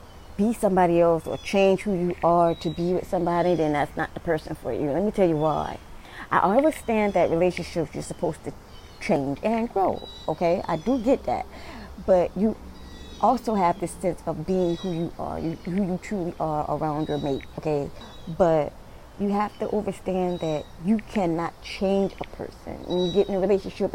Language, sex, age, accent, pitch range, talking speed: English, female, 20-39, American, 165-200 Hz, 190 wpm